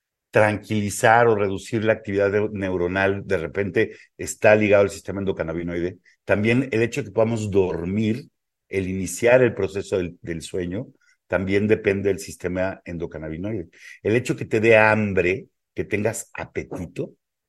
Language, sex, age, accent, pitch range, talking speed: Spanish, male, 50-69, Mexican, 95-120 Hz, 145 wpm